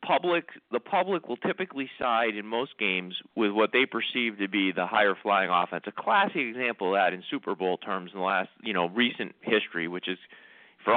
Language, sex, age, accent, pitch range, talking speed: English, male, 30-49, American, 95-125 Hz, 210 wpm